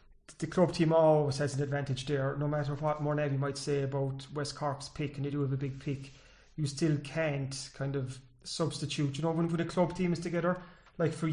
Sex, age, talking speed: male, 30-49, 215 wpm